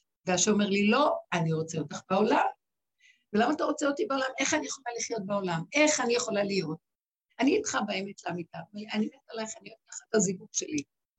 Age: 60-79